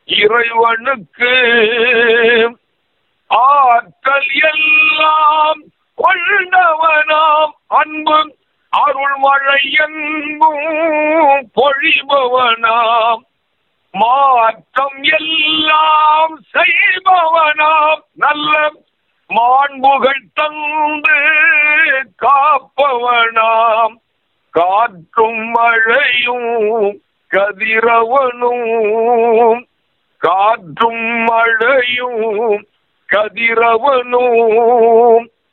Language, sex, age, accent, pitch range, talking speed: Tamil, male, 50-69, native, 190-300 Hz, 35 wpm